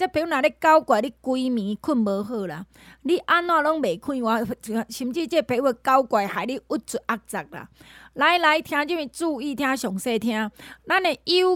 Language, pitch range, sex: Chinese, 225-310 Hz, female